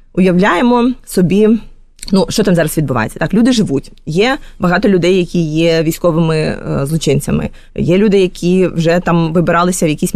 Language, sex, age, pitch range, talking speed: Ukrainian, female, 20-39, 170-210 Hz, 155 wpm